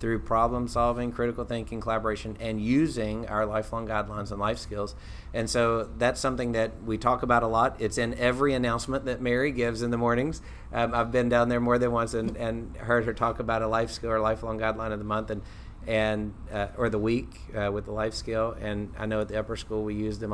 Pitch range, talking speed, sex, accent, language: 105-120 Hz, 230 wpm, male, American, English